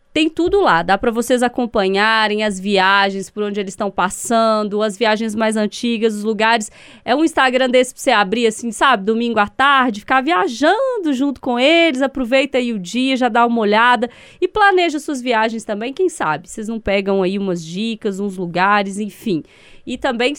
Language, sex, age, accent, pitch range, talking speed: Portuguese, female, 20-39, Brazilian, 205-250 Hz, 185 wpm